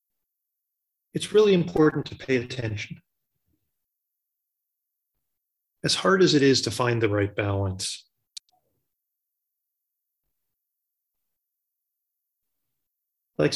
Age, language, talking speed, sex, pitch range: 30-49, English, 75 wpm, male, 110-150 Hz